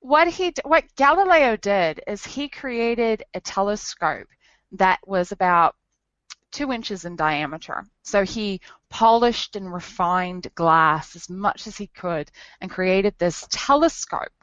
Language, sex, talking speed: English, female, 135 wpm